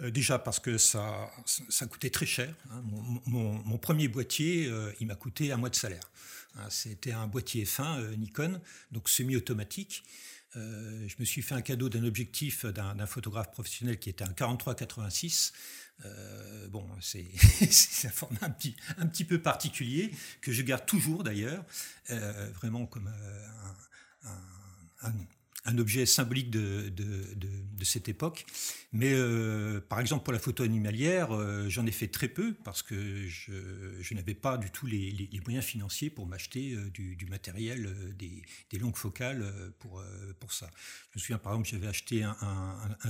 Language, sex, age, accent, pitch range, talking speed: French, male, 50-69, French, 100-125 Hz, 170 wpm